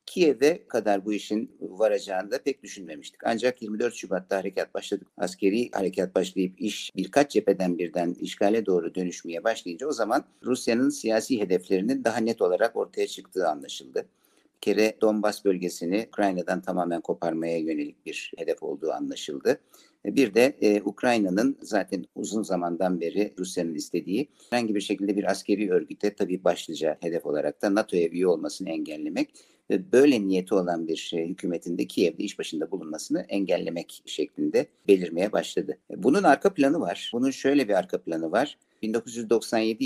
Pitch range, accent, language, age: 90-135 Hz, native, Turkish, 60-79